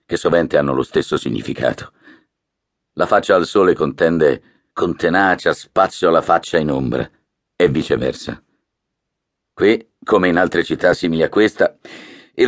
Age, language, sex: 50-69, Italian, male